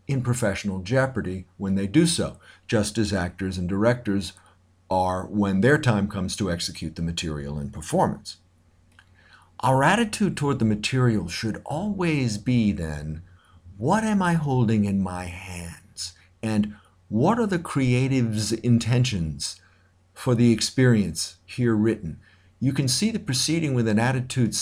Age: 50-69